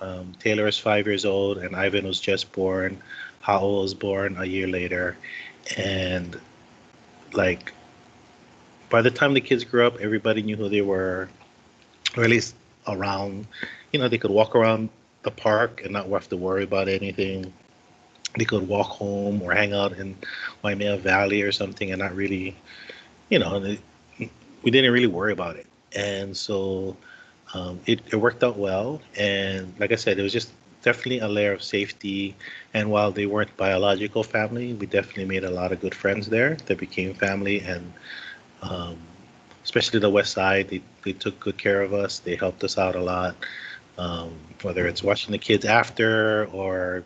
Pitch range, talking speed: 95-105 Hz, 175 wpm